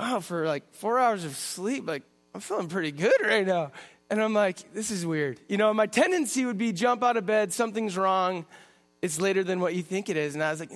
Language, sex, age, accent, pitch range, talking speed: English, male, 20-39, American, 185-240 Hz, 245 wpm